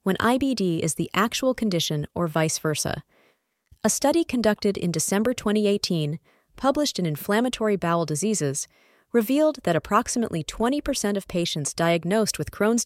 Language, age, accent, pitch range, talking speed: English, 30-49, American, 165-230 Hz, 135 wpm